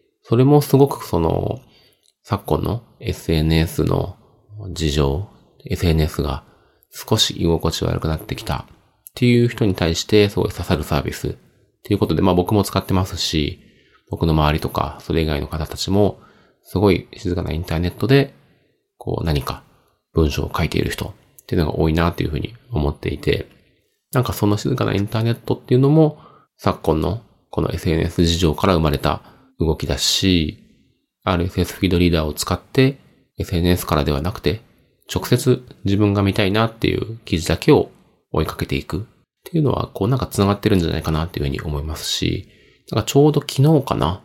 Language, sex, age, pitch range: Japanese, male, 30-49, 80-115 Hz